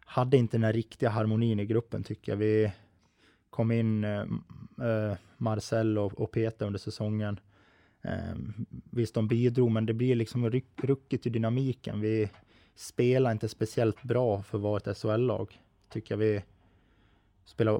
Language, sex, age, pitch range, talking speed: Swedish, male, 20-39, 105-120 Hz, 150 wpm